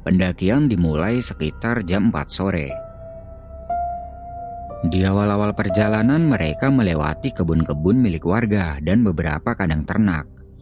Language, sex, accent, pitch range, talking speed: Indonesian, male, native, 80-110 Hz, 100 wpm